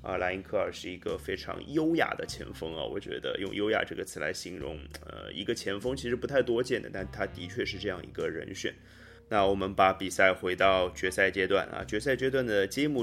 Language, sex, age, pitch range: Chinese, male, 20-39, 90-110 Hz